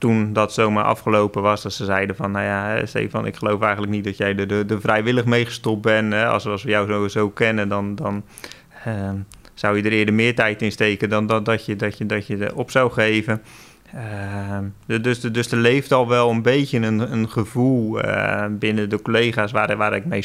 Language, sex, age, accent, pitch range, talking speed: Dutch, male, 20-39, Dutch, 105-120 Hz, 230 wpm